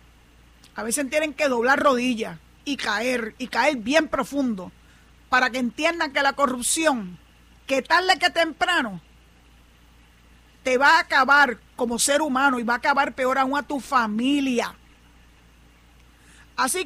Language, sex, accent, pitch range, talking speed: Spanish, female, American, 185-295 Hz, 140 wpm